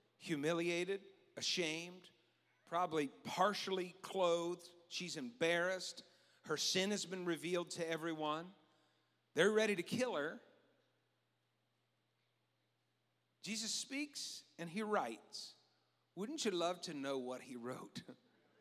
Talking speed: 105 wpm